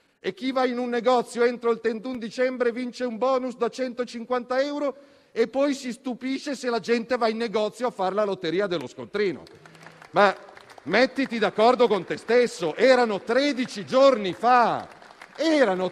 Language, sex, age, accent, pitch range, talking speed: Italian, male, 40-59, native, 215-260 Hz, 160 wpm